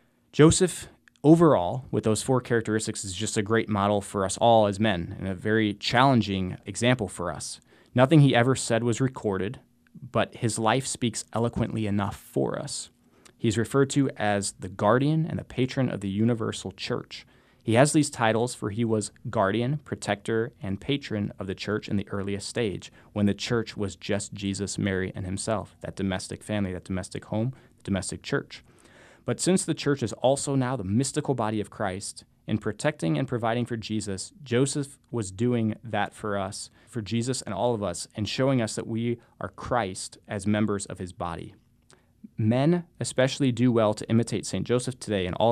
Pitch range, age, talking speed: 100-125 Hz, 20-39, 185 wpm